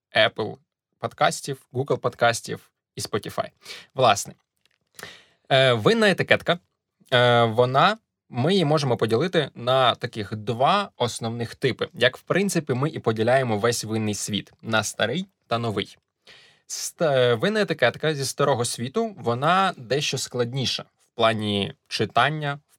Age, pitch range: 20-39, 115-150 Hz